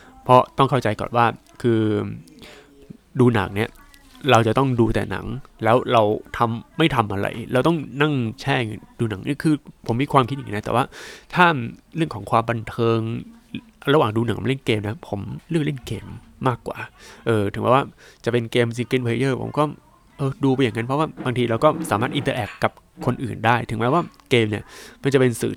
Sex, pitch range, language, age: male, 110-145 Hz, Thai, 20-39